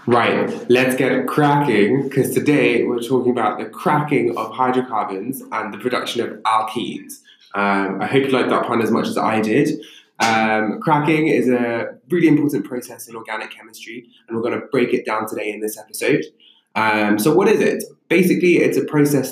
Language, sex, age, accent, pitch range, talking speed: English, male, 20-39, British, 110-140 Hz, 185 wpm